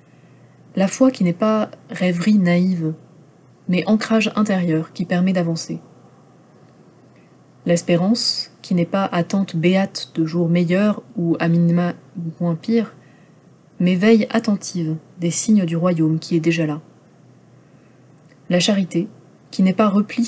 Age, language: 30-49, French